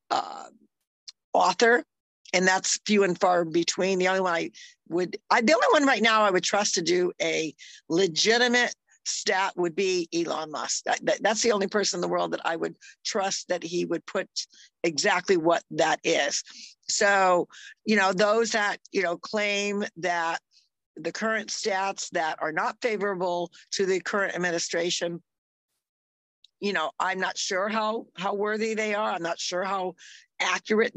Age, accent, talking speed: 50-69, American, 170 wpm